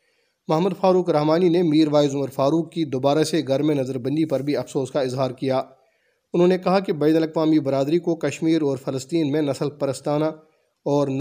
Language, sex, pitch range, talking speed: Urdu, male, 135-165 Hz, 185 wpm